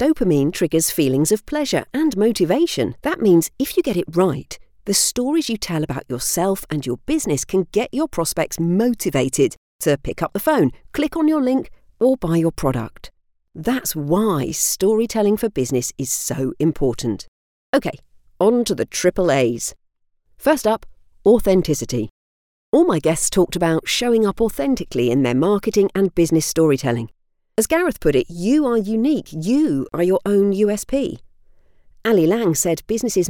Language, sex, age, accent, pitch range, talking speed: English, female, 50-69, British, 150-220 Hz, 160 wpm